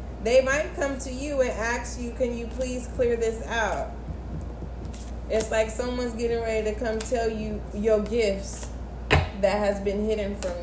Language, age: English, 20-39